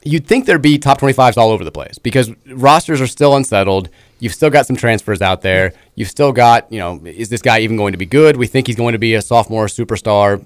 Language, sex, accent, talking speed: English, male, American, 250 wpm